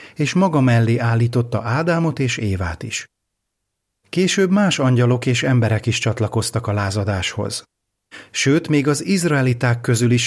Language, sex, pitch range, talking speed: Hungarian, male, 105-140 Hz, 135 wpm